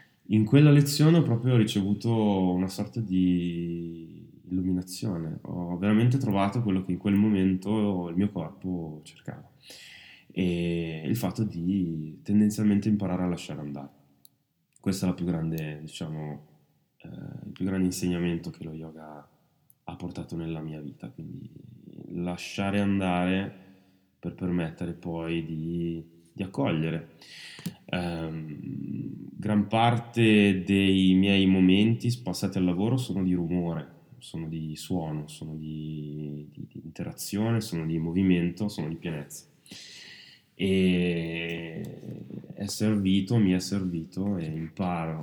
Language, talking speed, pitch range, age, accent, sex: Italian, 120 wpm, 80-100 Hz, 20-39, native, male